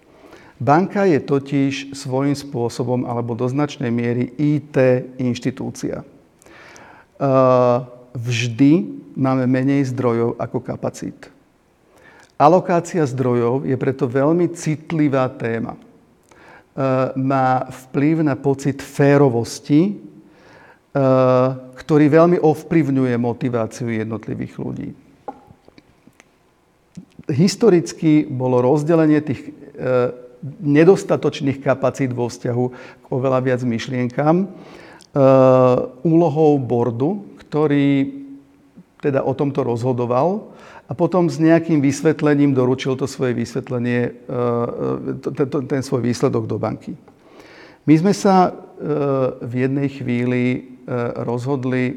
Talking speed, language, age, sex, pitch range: 90 wpm, Czech, 50-69, male, 125-150 Hz